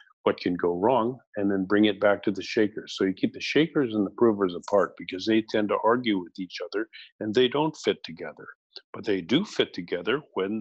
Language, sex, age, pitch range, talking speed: English, male, 50-69, 95-110 Hz, 225 wpm